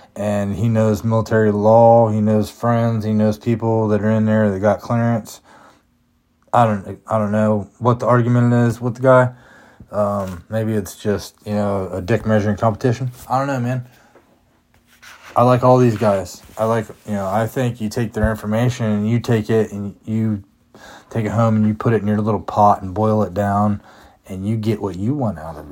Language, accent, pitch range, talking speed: English, American, 100-120 Hz, 205 wpm